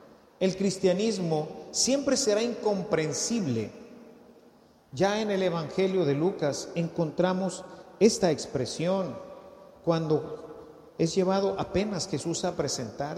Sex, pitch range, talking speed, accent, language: male, 145-205 Hz, 95 wpm, Mexican, English